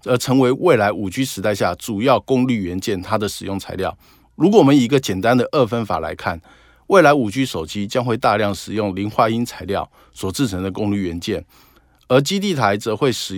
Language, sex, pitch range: Chinese, male, 100-135 Hz